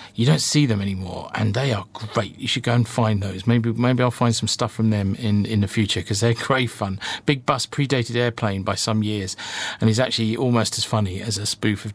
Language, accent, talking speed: English, British, 235 wpm